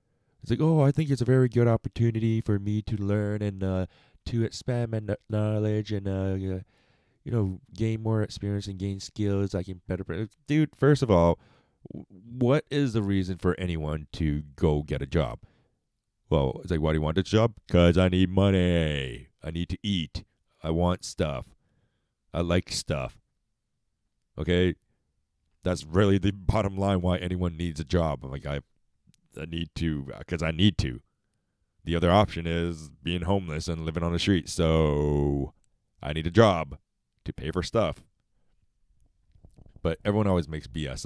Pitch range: 80-110 Hz